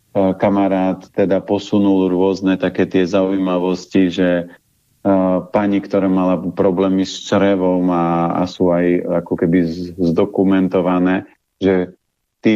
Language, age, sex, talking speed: Slovak, 40-59, male, 115 wpm